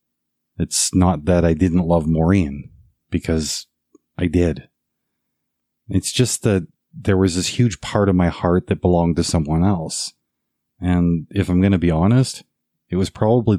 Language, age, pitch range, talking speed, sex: English, 30-49, 80-95 Hz, 160 wpm, male